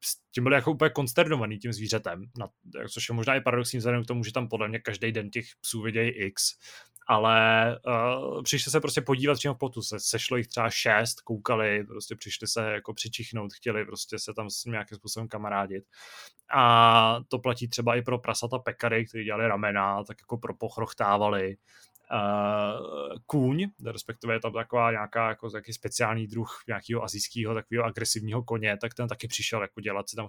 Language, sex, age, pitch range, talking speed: Czech, male, 20-39, 110-120 Hz, 185 wpm